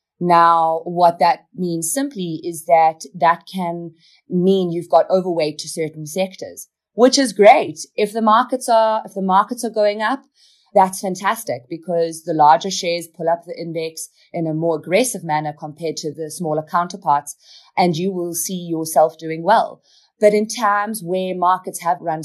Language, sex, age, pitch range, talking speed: English, female, 30-49, 160-195 Hz, 170 wpm